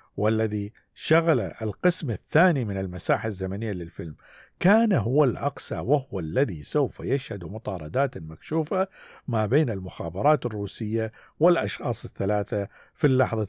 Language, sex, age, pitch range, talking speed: Arabic, male, 50-69, 100-135 Hz, 110 wpm